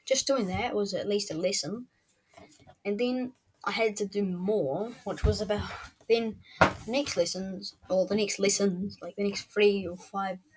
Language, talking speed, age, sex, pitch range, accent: English, 180 wpm, 20-39, female, 190-255 Hz, Australian